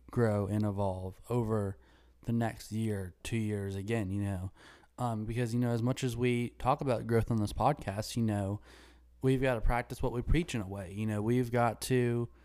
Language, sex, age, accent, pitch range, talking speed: English, male, 20-39, American, 100-120 Hz, 205 wpm